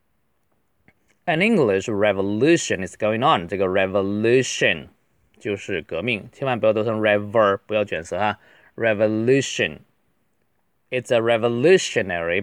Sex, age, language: male, 20-39, Chinese